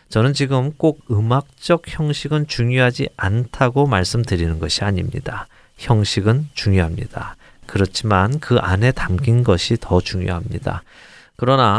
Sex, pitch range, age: male, 100-135 Hz, 40-59